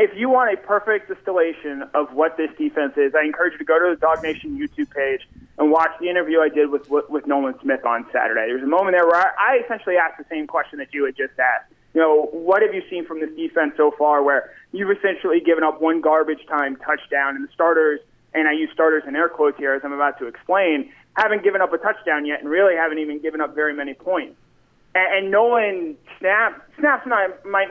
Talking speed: 230 wpm